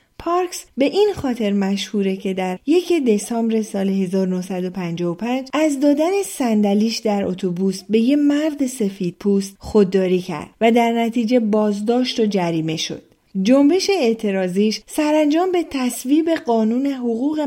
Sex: female